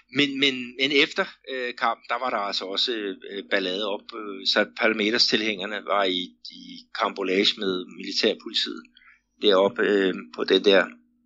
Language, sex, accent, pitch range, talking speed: Danish, male, native, 105-160 Hz, 155 wpm